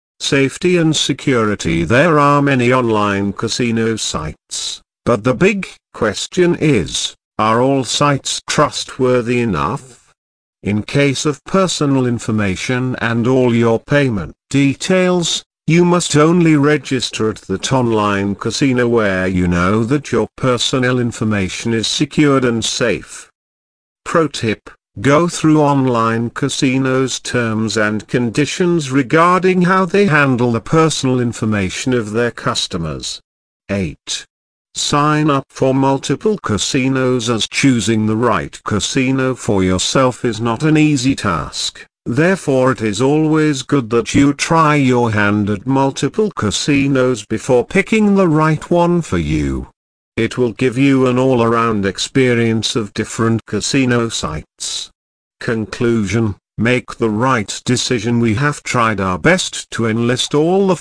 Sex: male